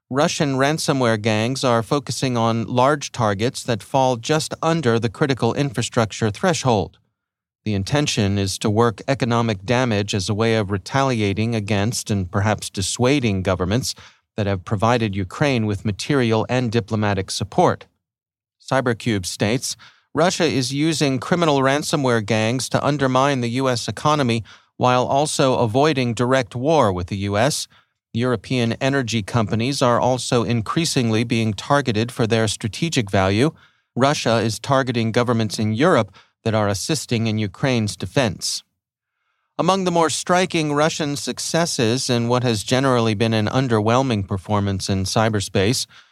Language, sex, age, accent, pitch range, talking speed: English, male, 40-59, American, 110-135 Hz, 135 wpm